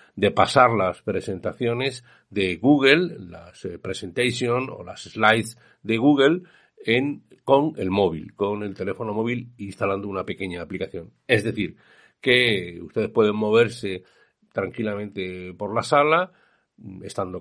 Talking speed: 130 wpm